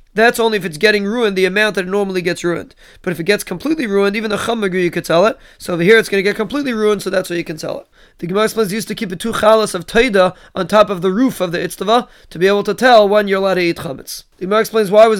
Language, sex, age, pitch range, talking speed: English, male, 20-39, 185-215 Hz, 310 wpm